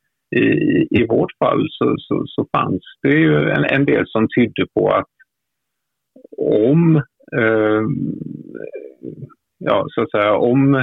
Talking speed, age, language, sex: 135 wpm, 50-69, English, male